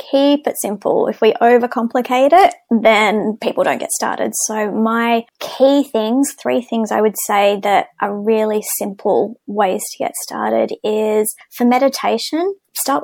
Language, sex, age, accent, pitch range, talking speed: English, female, 20-39, Australian, 205-245 Hz, 150 wpm